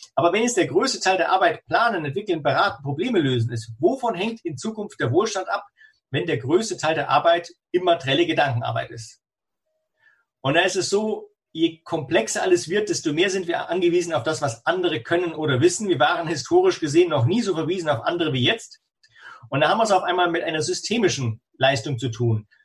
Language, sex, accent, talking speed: German, male, German, 200 wpm